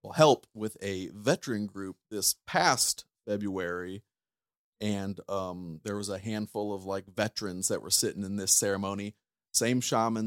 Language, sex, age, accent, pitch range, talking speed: English, male, 30-49, American, 100-120 Hz, 145 wpm